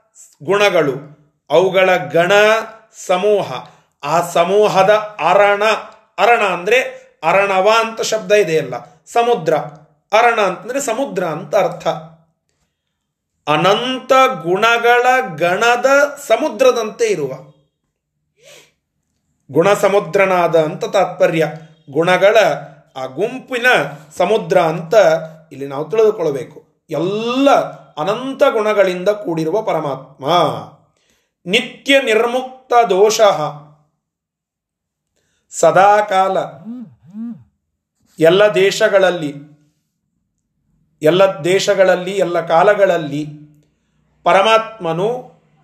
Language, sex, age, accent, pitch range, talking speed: Kannada, male, 40-59, native, 165-230 Hz, 70 wpm